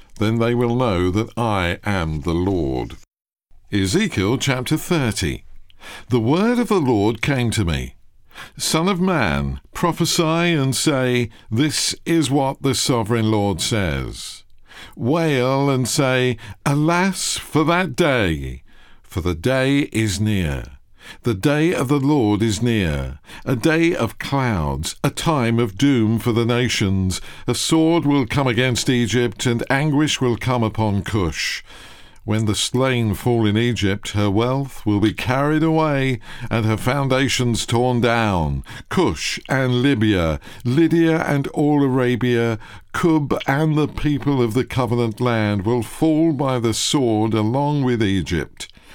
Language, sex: English, male